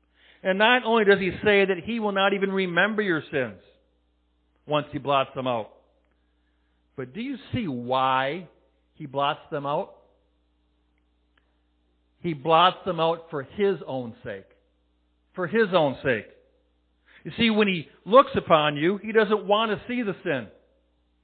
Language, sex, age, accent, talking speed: English, male, 50-69, American, 155 wpm